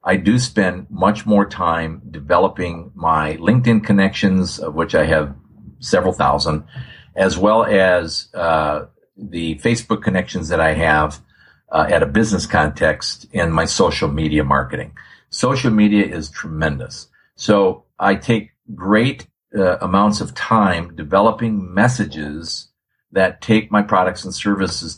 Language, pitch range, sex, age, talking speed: English, 85-110 Hz, male, 50-69, 135 wpm